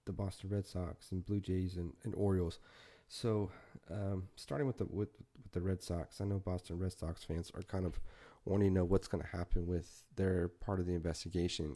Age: 30-49